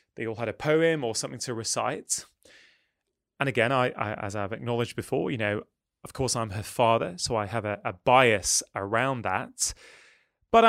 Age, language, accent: 20-39, English, British